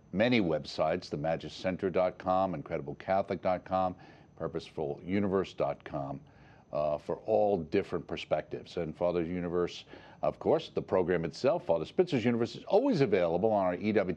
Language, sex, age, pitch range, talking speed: English, male, 50-69, 90-115 Hz, 120 wpm